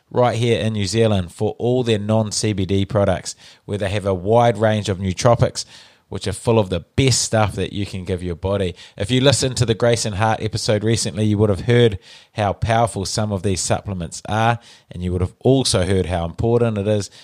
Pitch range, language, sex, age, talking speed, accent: 95-115 Hz, English, male, 20-39, 215 wpm, Australian